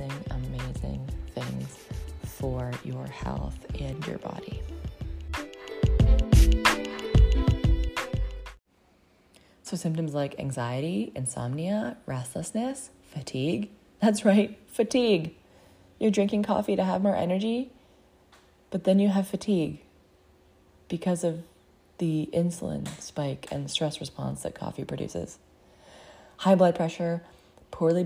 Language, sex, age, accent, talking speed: English, female, 20-39, American, 95 wpm